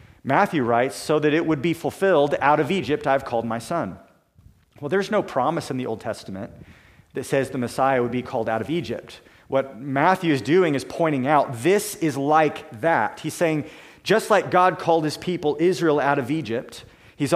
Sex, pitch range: male, 135-170 Hz